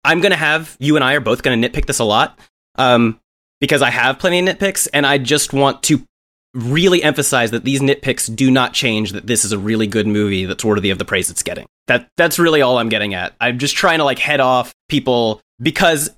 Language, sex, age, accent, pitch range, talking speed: English, male, 30-49, American, 115-145 Hz, 245 wpm